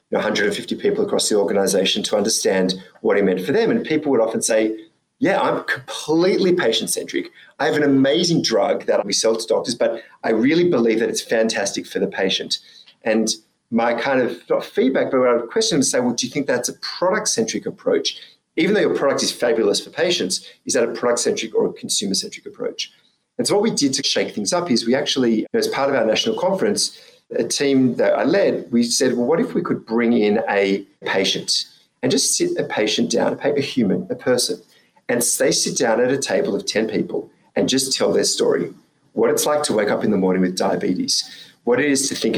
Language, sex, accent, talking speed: English, male, Australian, 225 wpm